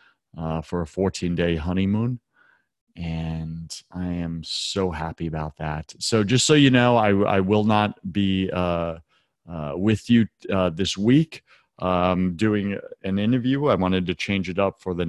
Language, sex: English, male